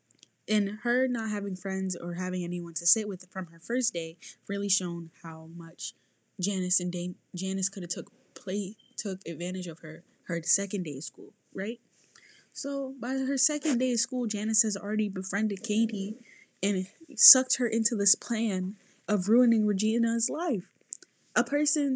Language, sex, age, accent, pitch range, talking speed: English, female, 10-29, American, 175-230 Hz, 165 wpm